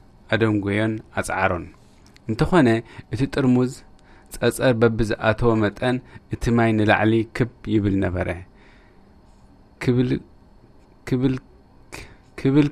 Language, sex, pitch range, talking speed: English, male, 100-120 Hz, 75 wpm